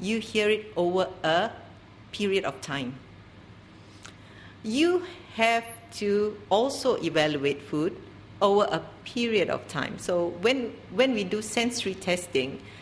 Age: 50-69